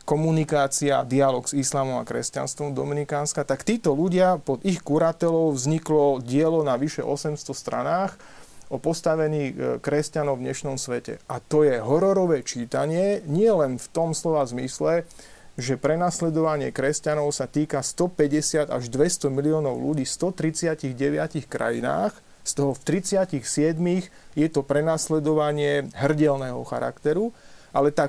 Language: Slovak